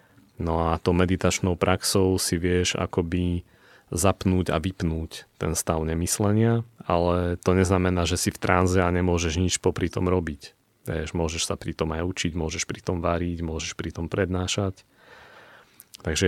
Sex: male